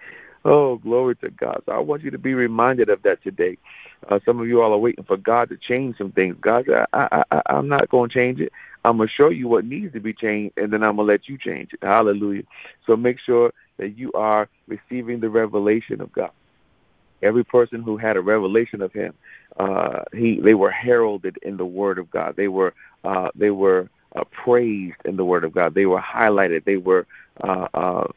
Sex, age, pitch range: male, 50-69, 95-120 Hz